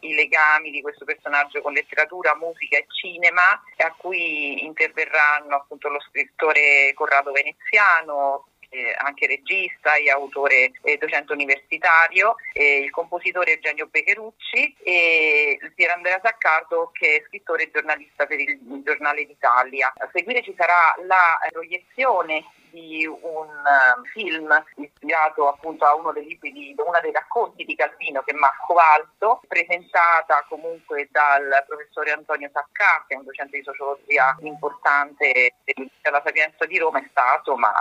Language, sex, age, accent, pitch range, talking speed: Italian, female, 40-59, native, 145-175 Hz, 145 wpm